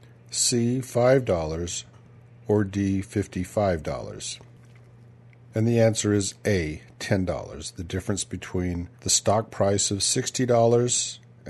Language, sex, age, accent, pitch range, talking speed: English, male, 50-69, American, 100-120 Hz, 100 wpm